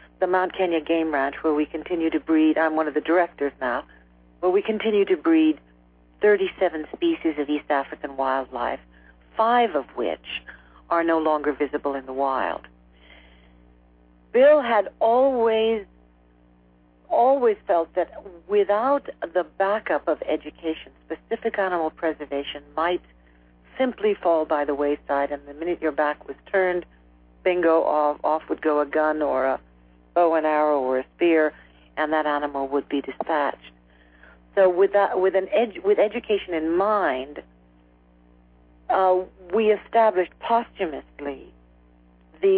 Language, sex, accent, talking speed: English, female, American, 135 wpm